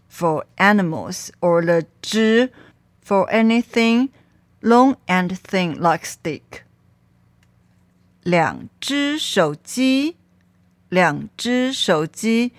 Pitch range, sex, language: 165-250 Hz, female, Chinese